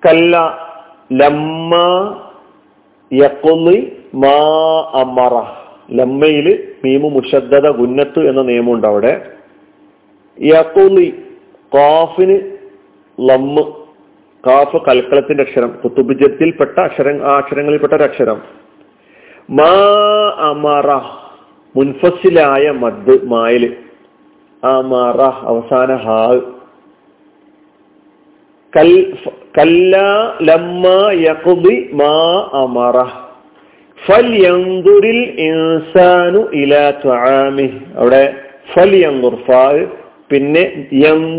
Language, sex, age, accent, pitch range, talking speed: Malayalam, male, 40-59, native, 135-180 Hz, 40 wpm